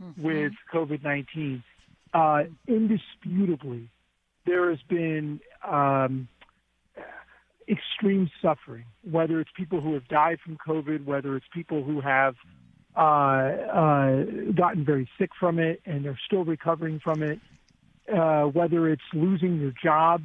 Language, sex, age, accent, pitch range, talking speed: English, male, 50-69, American, 145-175 Hz, 125 wpm